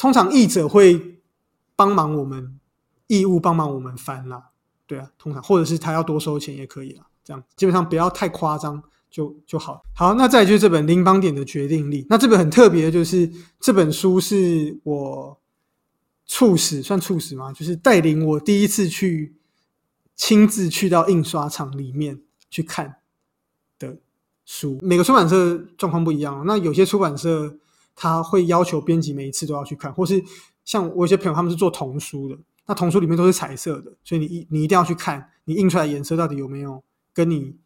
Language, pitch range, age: Chinese, 150-190 Hz, 20-39